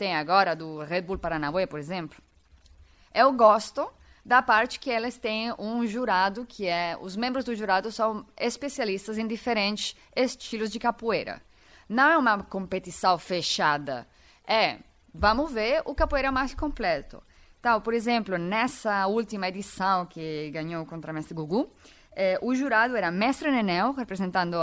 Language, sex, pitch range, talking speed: Portuguese, female, 175-245 Hz, 155 wpm